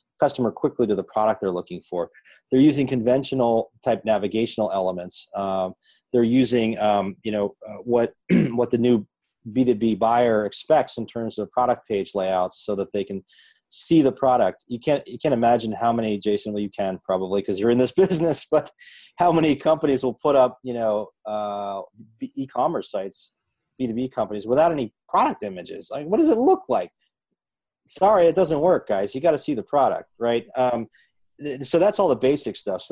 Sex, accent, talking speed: male, American, 190 wpm